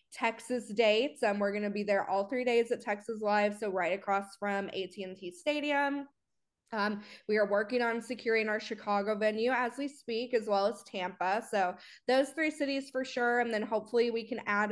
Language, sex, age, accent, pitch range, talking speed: English, female, 20-39, American, 200-240 Hz, 195 wpm